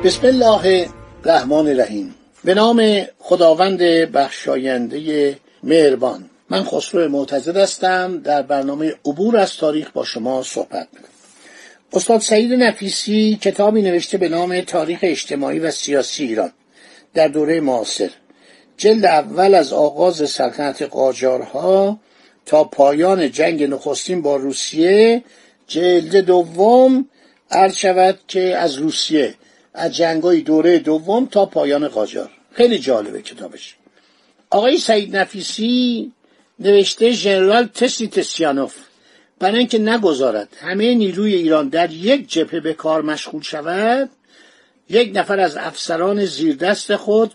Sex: male